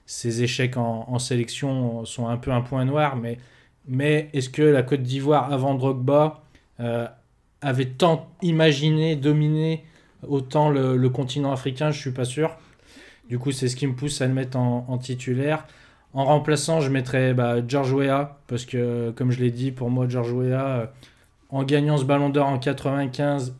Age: 20-39